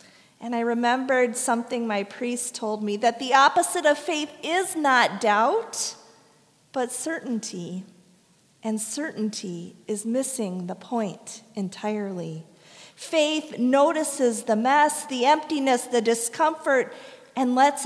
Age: 40-59